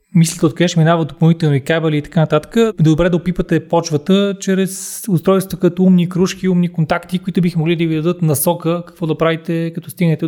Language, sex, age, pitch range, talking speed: Bulgarian, male, 20-39, 145-175 Hz, 185 wpm